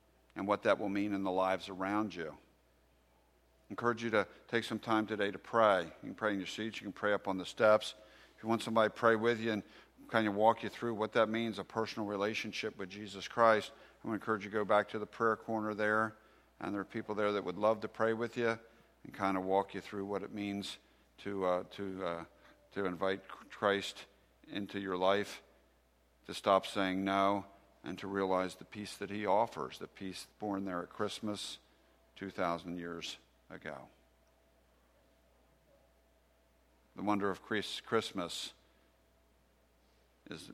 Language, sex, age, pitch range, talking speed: English, male, 50-69, 85-110 Hz, 190 wpm